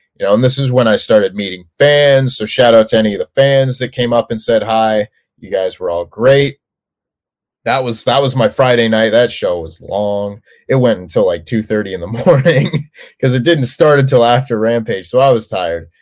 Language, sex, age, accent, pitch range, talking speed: English, male, 30-49, American, 110-140 Hz, 225 wpm